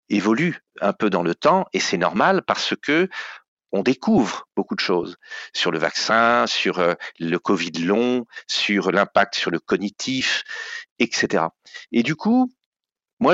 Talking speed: 150 wpm